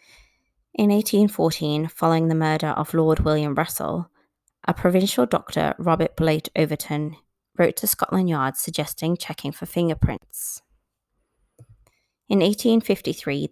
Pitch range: 155-180 Hz